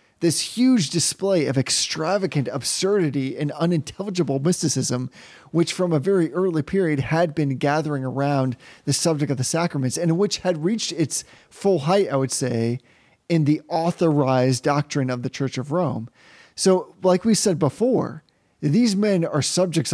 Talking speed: 155 wpm